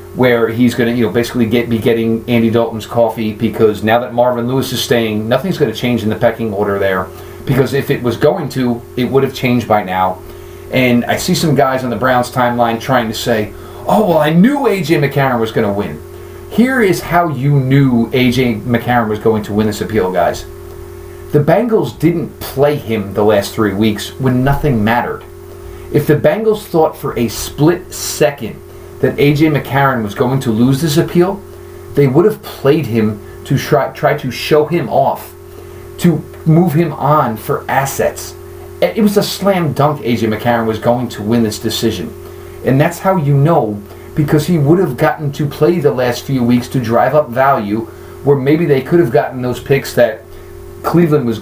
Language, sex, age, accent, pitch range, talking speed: English, male, 40-59, American, 115-150 Hz, 195 wpm